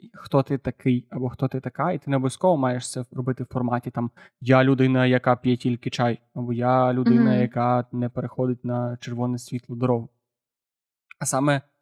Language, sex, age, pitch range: Ukrainian, male, 20-39, 125-145 Hz